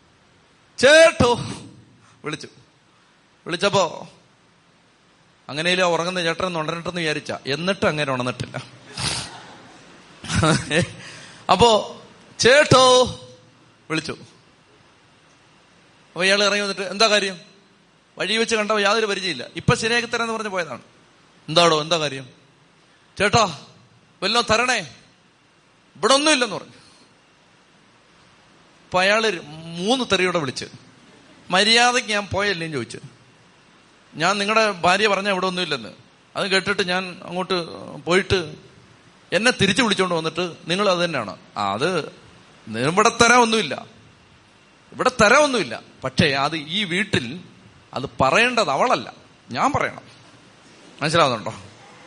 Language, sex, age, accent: Malayalam, male, 30-49, native